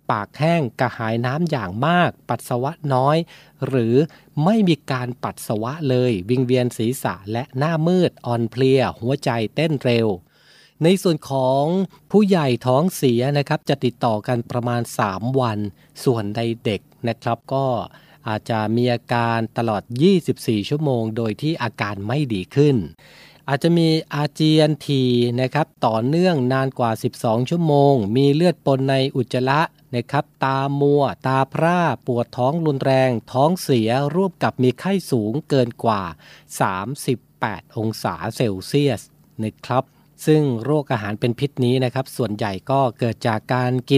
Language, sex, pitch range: Thai, male, 120-150 Hz